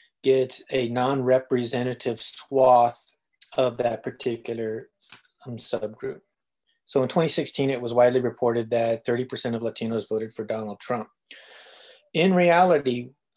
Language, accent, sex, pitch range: English, American, male, 115-135 Hz